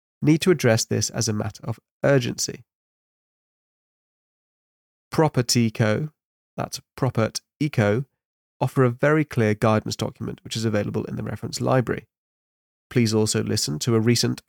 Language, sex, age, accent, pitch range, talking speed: English, male, 30-49, British, 110-130 Hz, 135 wpm